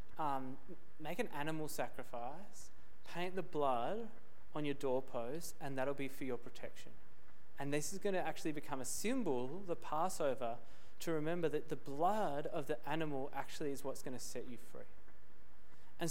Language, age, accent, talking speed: English, 20-39, Australian, 170 wpm